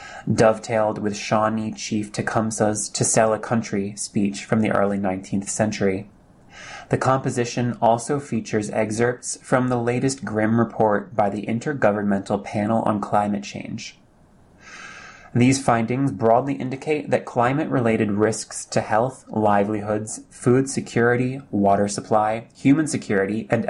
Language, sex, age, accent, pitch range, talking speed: English, male, 20-39, American, 105-120 Hz, 125 wpm